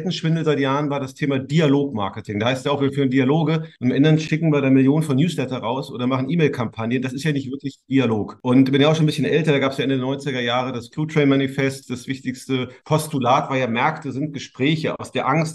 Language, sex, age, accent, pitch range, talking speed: German, male, 30-49, German, 130-150 Hz, 240 wpm